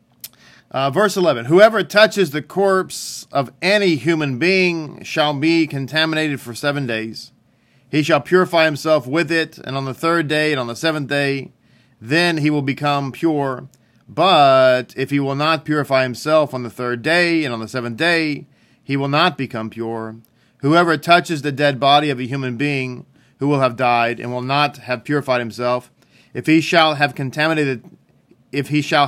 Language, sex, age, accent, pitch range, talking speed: English, male, 40-59, American, 125-155 Hz, 180 wpm